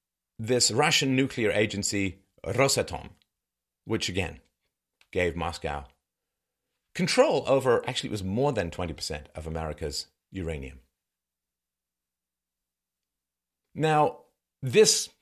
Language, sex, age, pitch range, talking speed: English, male, 40-59, 80-125 Hz, 85 wpm